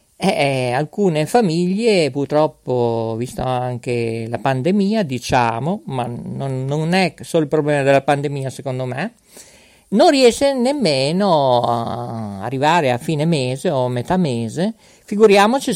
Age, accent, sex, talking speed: 50-69, native, male, 125 wpm